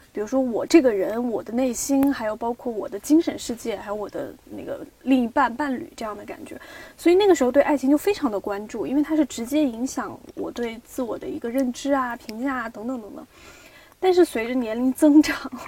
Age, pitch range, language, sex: 20-39, 240-310 Hz, Chinese, female